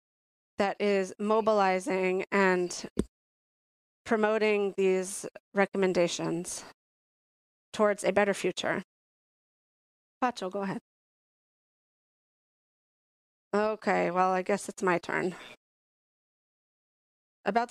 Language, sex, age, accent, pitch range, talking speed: English, female, 30-49, American, 185-220 Hz, 75 wpm